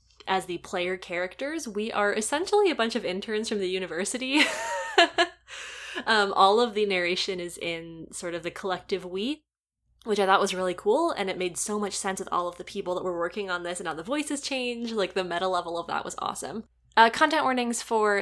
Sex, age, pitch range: female, 10-29, 180-280 Hz